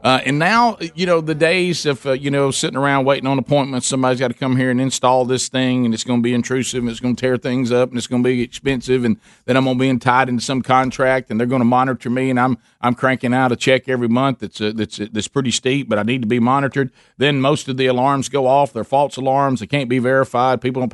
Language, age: English, 50-69